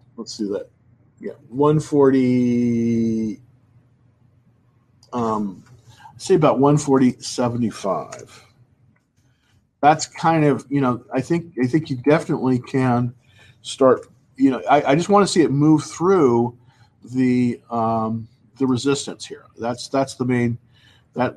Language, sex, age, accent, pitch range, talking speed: English, male, 50-69, American, 115-135 Hz, 130 wpm